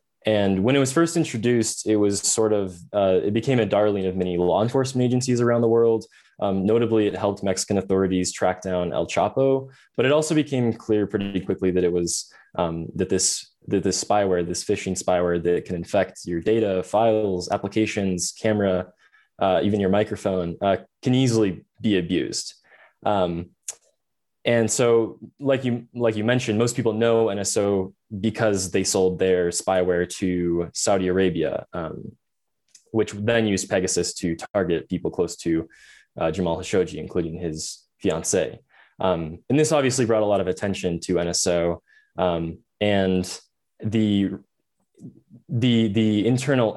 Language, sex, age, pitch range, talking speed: English, male, 20-39, 90-115 Hz, 155 wpm